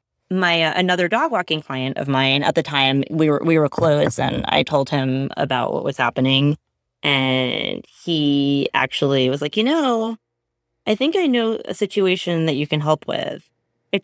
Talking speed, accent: 185 wpm, American